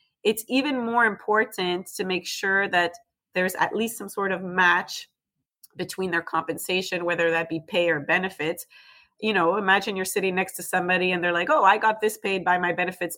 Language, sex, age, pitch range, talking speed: English, female, 30-49, 165-195 Hz, 195 wpm